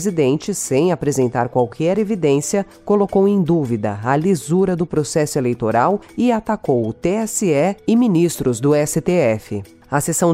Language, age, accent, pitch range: Portuguese, 40-59, Brazilian, 120-175 Hz